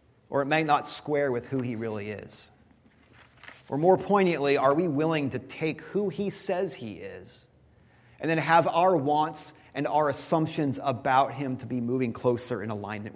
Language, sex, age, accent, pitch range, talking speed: English, male, 30-49, American, 130-185 Hz, 180 wpm